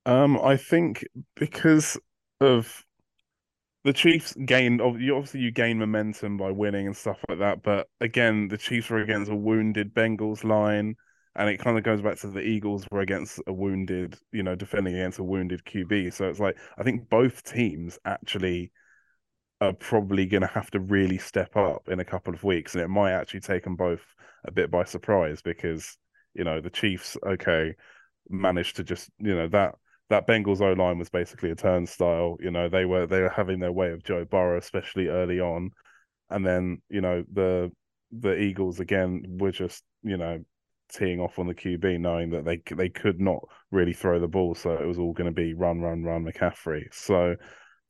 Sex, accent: male, British